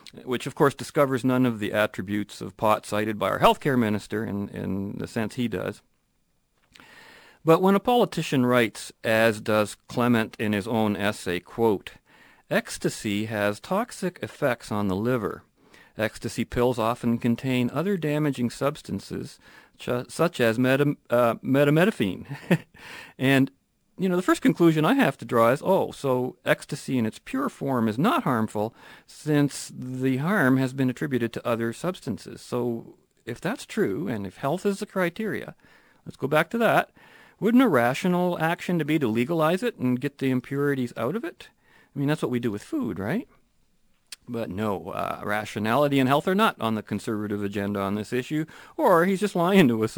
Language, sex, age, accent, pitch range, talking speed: English, male, 50-69, American, 110-155 Hz, 175 wpm